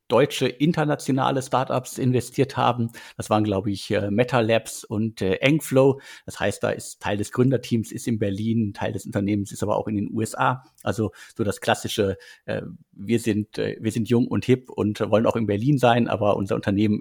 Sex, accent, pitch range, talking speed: male, German, 110-135 Hz, 195 wpm